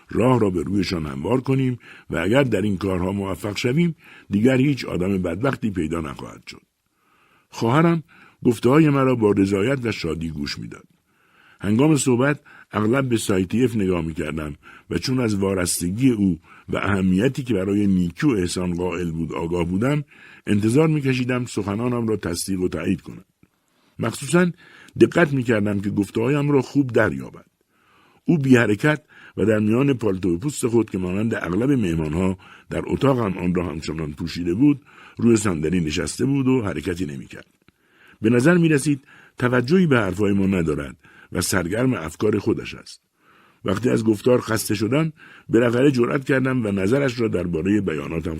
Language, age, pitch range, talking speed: Persian, 60-79, 90-130 Hz, 155 wpm